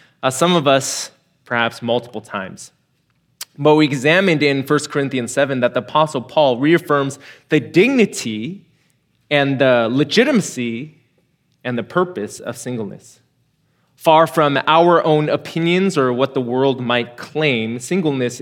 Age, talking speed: 20-39, 135 wpm